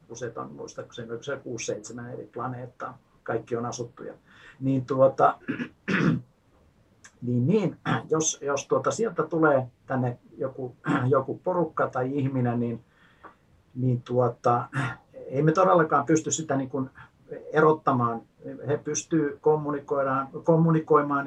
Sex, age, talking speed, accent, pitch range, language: male, 50-69, 105 wpm, native, 125-155 Hz, Finnish